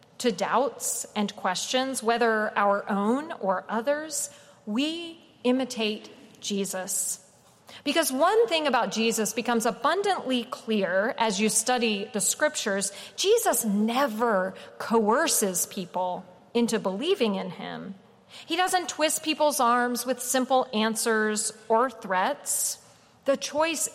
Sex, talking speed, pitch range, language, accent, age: female, 115 wpm, 210-275 Hz, English, American, 40-59